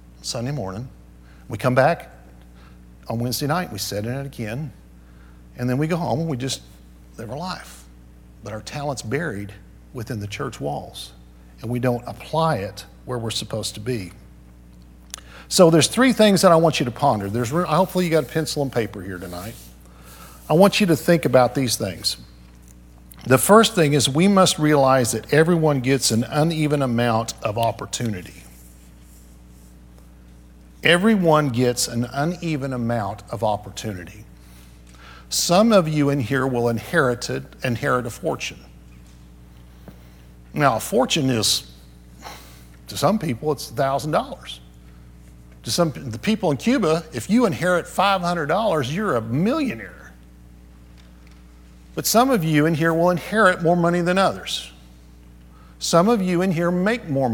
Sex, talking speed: male, 150 wpm